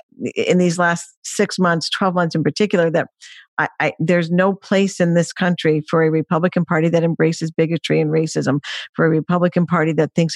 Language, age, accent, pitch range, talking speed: English, 50-69, American, 160-200 Hz, 180 wpm